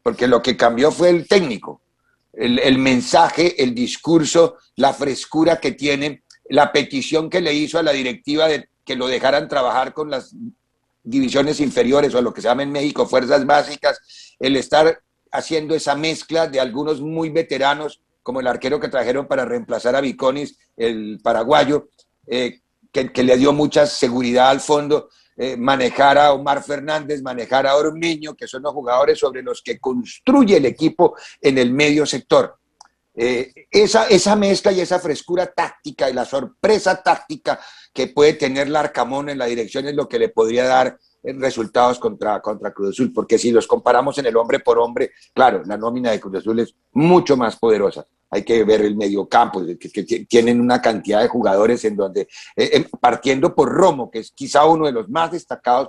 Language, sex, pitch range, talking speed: English, male, 125-170 Hz, 185 wpm